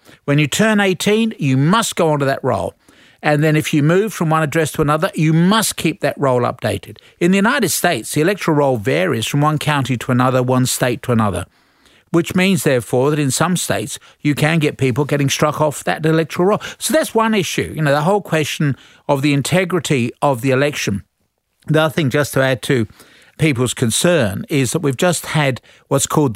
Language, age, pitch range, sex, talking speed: English, 50-69, 125-160 Hz, male, 205 wpm